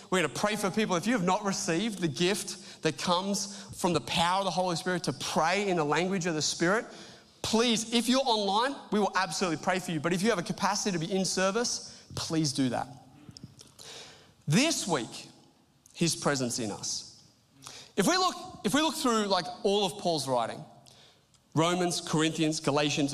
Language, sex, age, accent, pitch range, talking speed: English, male, 30-49, Australian, 155-210 Hz, 190 wpm